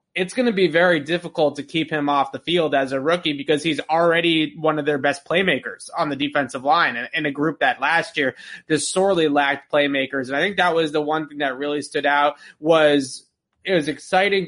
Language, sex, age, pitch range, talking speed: English, male, 20-39, 140-160 Hz, 220 wpm